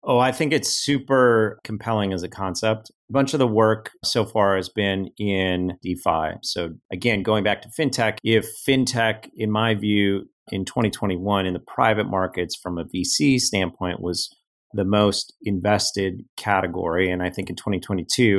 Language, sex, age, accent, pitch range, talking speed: English, male, 30-49, American, 95-110 Hz, 165 wpm